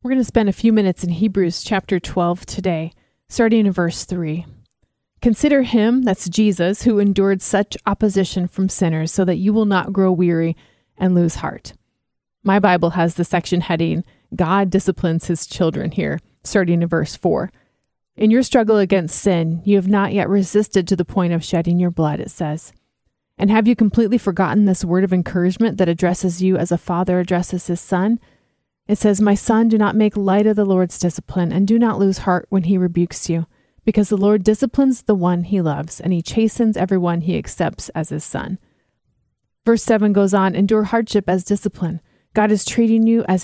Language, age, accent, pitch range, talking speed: English, 30-49, American, 175-210 Hz, 190 wpm